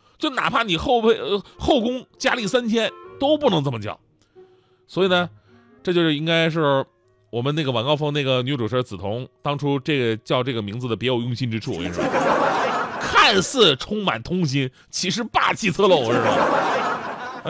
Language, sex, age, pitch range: Chinese, male, 30-49, 130-195 Hz